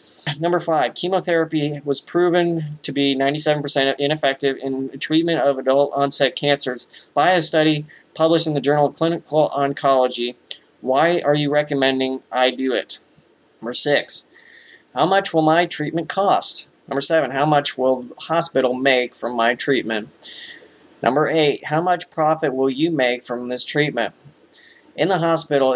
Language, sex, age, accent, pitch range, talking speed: English, male, 20-39, American, 130-160 Hz, 155 wpm